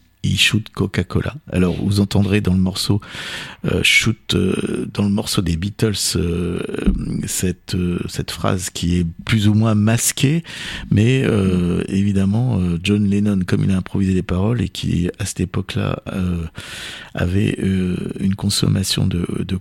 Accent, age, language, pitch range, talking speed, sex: French, 50-69, French, 90-115 Hz, 160 wpm, male